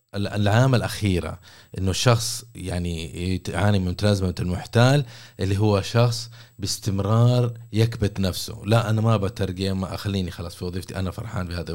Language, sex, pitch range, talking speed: Arabic, male, 95-120 Hz, 140 wpm